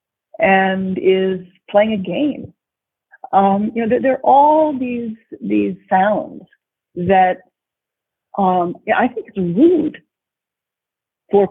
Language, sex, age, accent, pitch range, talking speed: English, female, 50-69, American, 195-305 Hz, 115 wpm